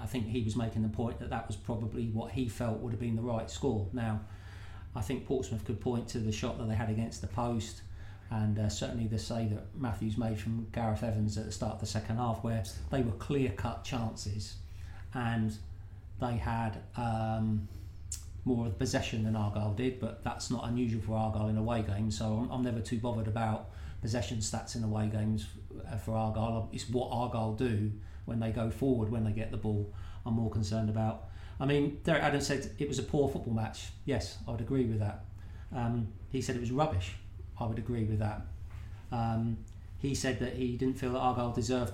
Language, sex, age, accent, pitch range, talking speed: English, male, 40-59, British, 100-120 Hz, 210 wpm